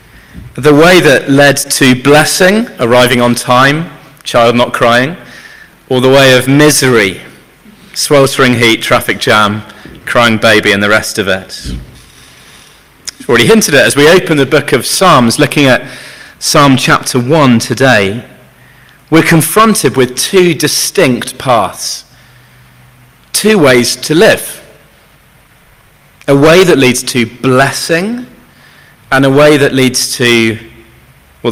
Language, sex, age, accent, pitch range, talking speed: English, male, 30-49, British, 120-150 Hz, 130 wpm